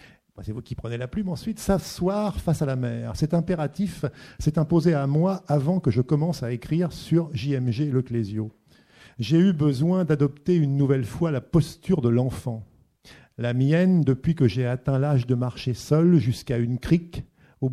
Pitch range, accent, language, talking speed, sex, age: 125-165 Hz, French, French, 180 wpm, male, 50-69